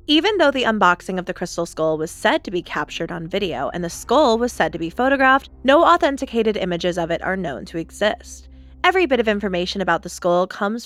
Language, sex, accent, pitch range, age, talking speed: English, female, American, 170-270 Hz, 20-39, 220 wpm